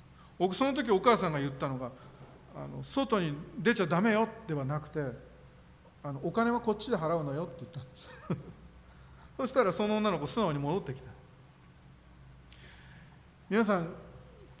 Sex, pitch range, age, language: male, 135-210 Hz, 40-59, Japanese